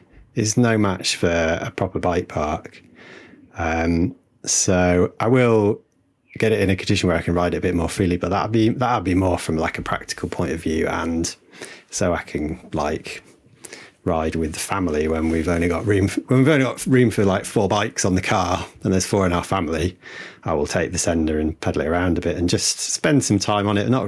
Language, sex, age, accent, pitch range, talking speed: English, male, 30-49, British, 85-105 Hz, 225 wpm